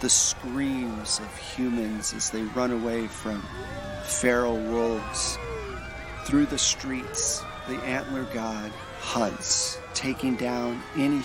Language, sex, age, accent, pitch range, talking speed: English, male, 40-59, American, 110-130 Hz, 110 wpm